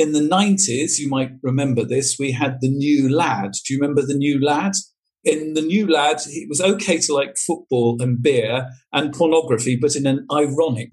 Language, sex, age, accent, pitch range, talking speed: English, male, 50-69, British, 120-165 Hz, 200 wpm